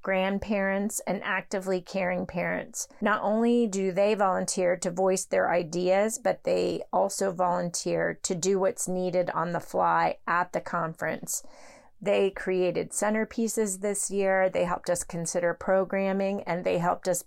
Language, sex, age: English, female, 30-49